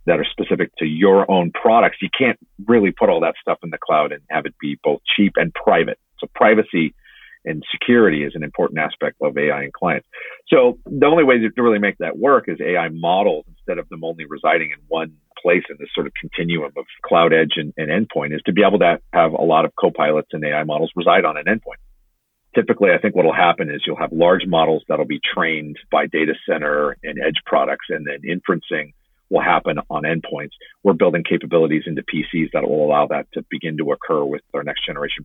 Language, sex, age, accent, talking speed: English, male, 50-69, American, 220 wpm